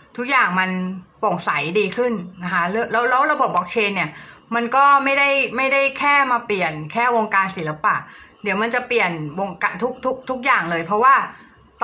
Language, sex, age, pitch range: Thai, female, 20-39, 190-235 Hz